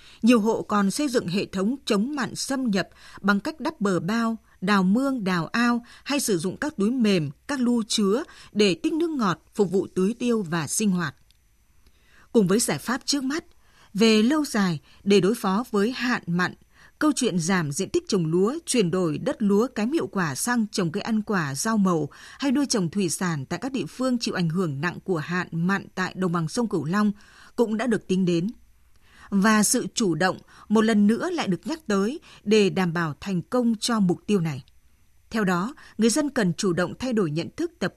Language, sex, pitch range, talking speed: Vietnamese, female, 185-245 Hz, 215 wpm